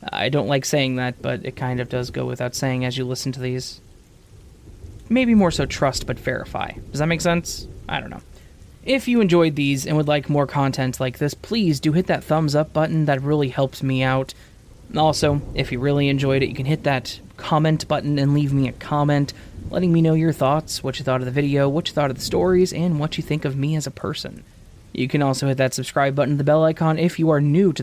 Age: 20-39